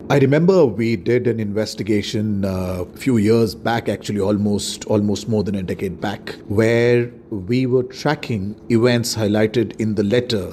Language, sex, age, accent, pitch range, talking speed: Hindi, male, 40-59, native, 110-130 Hz, 160 wpm